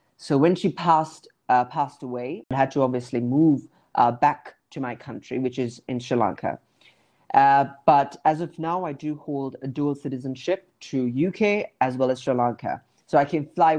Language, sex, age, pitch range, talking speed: English, female, 30-49, 130-155 Hz, 190 wpm